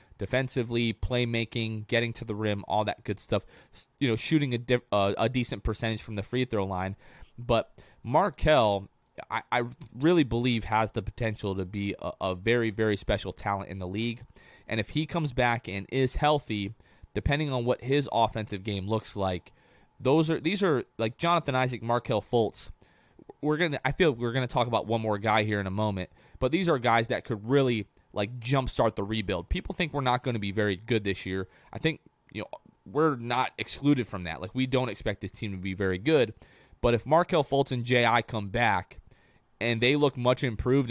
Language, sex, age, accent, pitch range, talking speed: English, male, 20-39, American, 105-130 Hz, 200 wpm